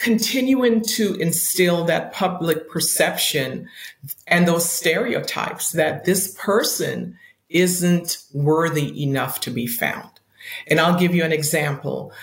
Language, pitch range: English, 160-210 Hz